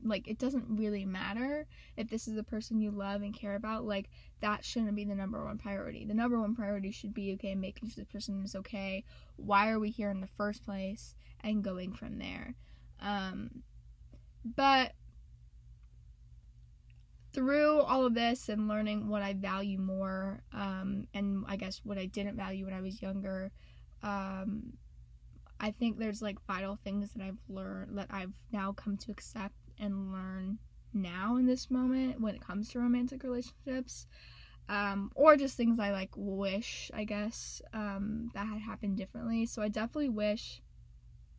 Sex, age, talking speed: female, 10-29, 170 wpm